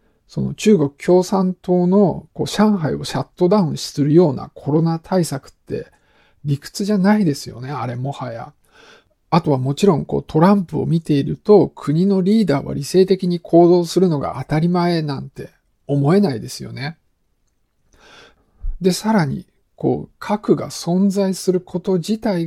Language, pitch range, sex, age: Japanese, 145-185 Hz, male, 50-69